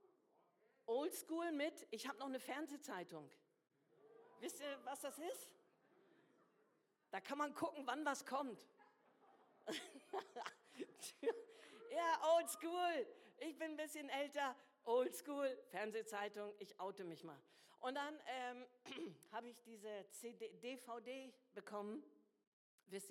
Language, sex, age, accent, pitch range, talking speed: German, female, 50-69, German, 225-295 Hz, 110 wpm